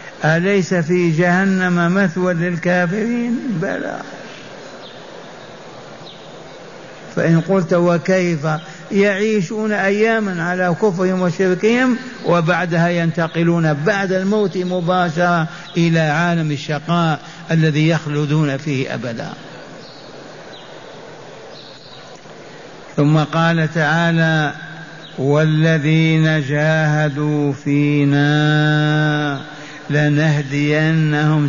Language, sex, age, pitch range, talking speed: Arabic, male, 60-79, 150-180 Hz, 65 wpm